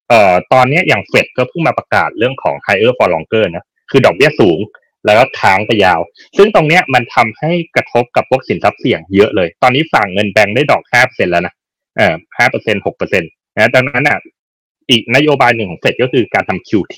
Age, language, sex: 30-49, Thai, male